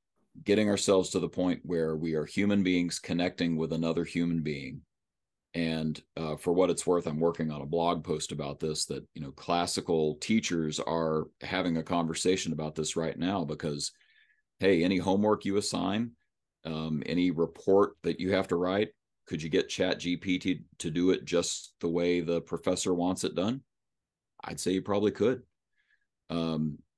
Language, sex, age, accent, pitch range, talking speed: English, male, 40-59, American, 80-90 Hz, 175 wpm